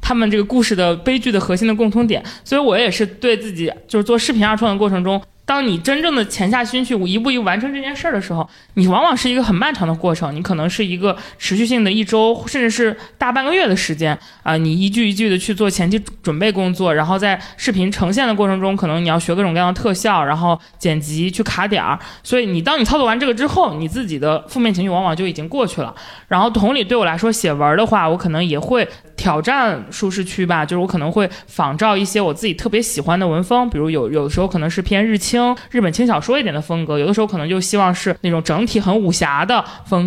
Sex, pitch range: male, 175-225 Hz